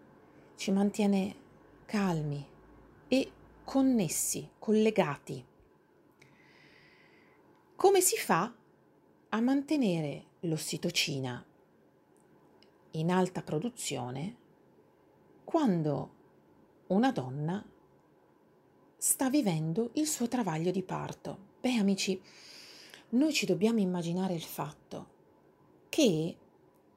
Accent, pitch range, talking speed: native, 165-245 Hz, 75 wpm